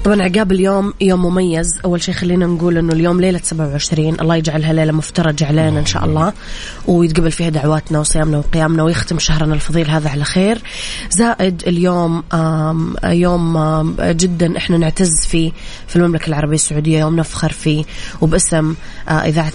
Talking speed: 145 wpm